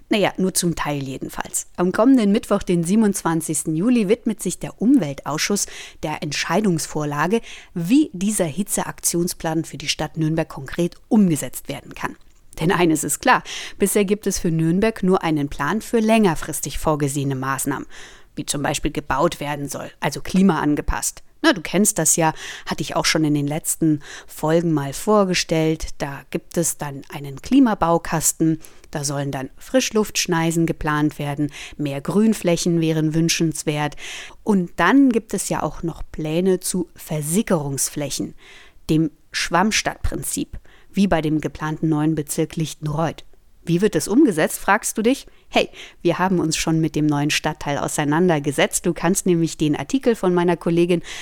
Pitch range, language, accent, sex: 155-195 Hz, German, German, female